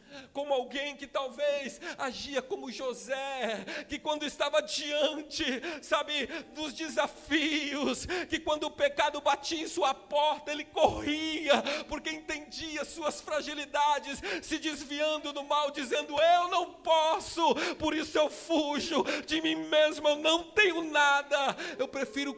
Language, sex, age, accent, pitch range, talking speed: Portuguese, male, 40-59, Brazilian, 230-305 Hz, 130 wpm